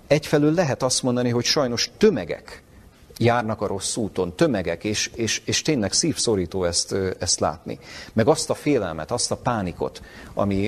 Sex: male